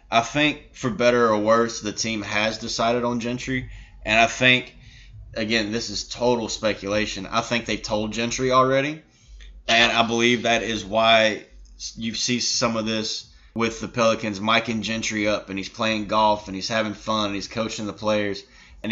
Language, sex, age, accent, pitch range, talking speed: English, male, 20-39, American, 105-125 Hz, 185 wpm